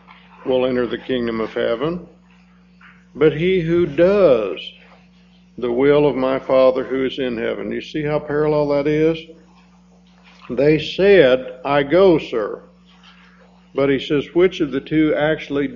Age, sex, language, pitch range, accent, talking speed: 60-79, male, English, 140-185 Hz, American, 150 wpm